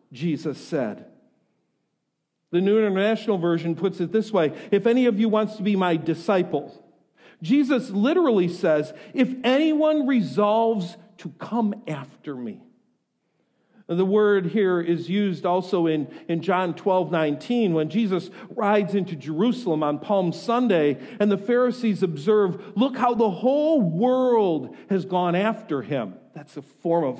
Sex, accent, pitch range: male, American, 180-240 Hz